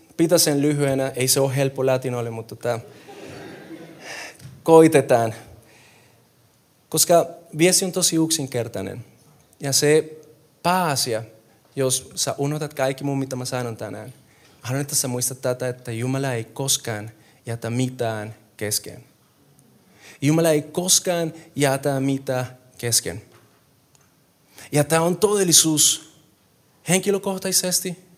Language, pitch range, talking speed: Finnish, 130-175 Hz, 105 wpm